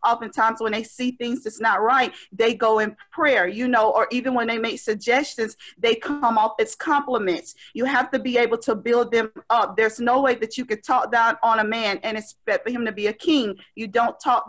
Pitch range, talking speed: 225-265 Hz, 230 wpm